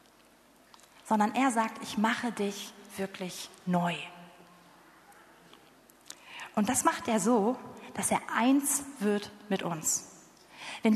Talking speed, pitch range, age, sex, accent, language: 110 wpm, 195-255 Hz, 30-49, female, German, German